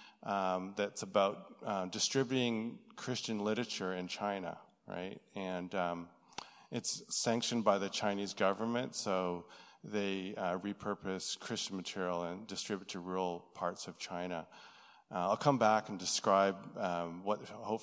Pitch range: 95-110 Hz